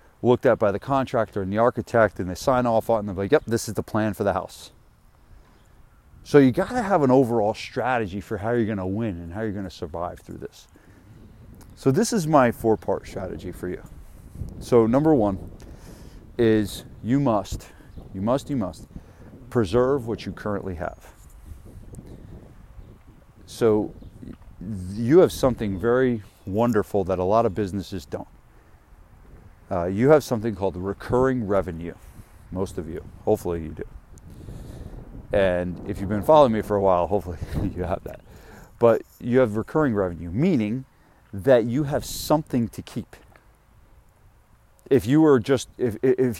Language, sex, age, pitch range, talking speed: English, male, 40-59, 95-120 Hz, 165 wpm